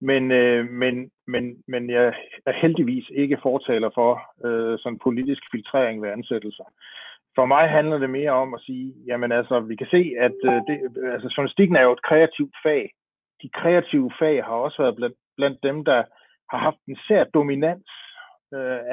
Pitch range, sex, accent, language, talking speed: 120-155 Hz, male, native, Danish, 180 wpm